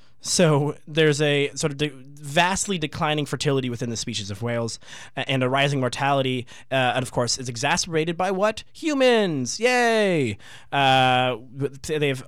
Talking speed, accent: 145 wpm, American